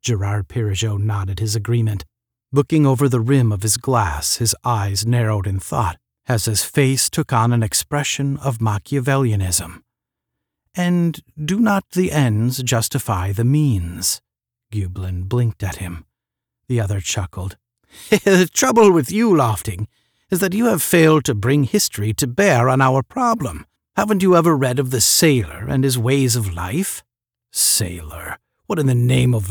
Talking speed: 155 wpm